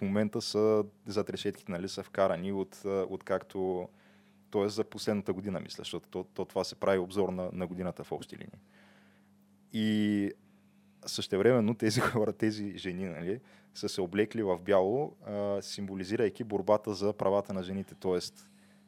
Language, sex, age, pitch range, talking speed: Bulgarian, male, 20-39, 95-110 Hz, 150 wpm